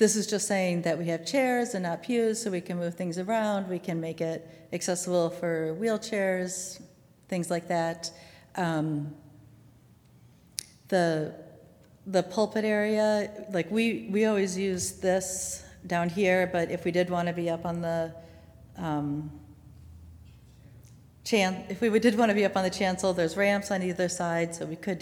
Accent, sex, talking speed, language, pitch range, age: American, female, 170 wpm, English, 160-190 Hz, 40-59